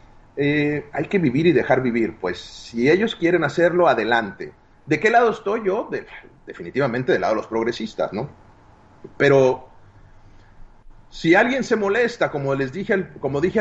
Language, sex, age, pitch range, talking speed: Spanish, male, 40-59, 120-175 Hz, 155 wpm